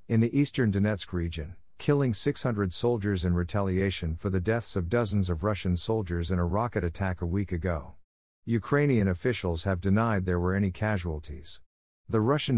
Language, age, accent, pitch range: French, 50-69, American, 90-115 Hz